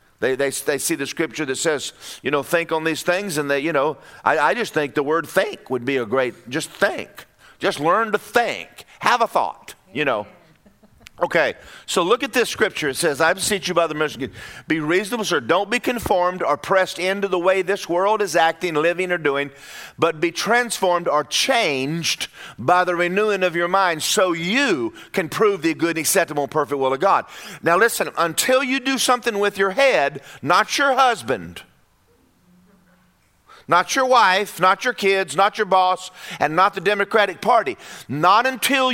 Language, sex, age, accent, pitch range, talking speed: English, male, 50-69, American, 175-245 Hz, 195 wpm